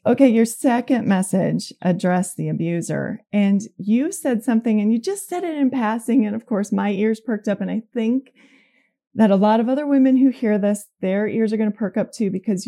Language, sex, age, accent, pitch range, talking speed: English, female, 30-49, American, 180-225 Hz, 220 wpm